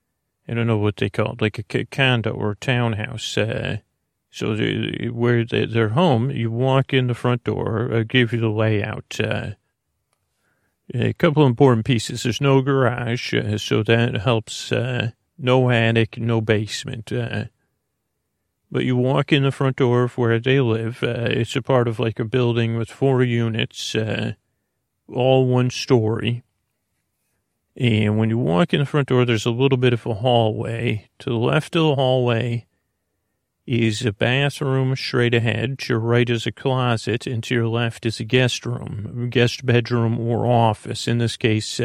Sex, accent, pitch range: male, American, 110-125 Hz